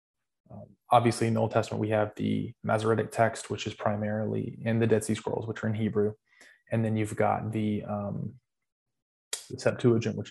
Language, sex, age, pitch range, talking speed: English, male, 20-39, 105-120 Hz, 180 wpm